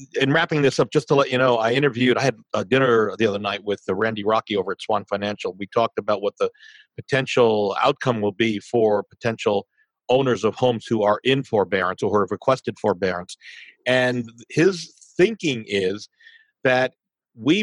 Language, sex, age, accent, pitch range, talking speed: English, male, 50-69, American, 110-145 Hz, 185 wpm